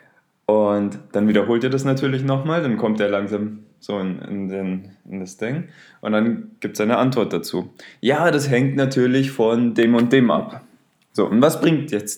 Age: 20-39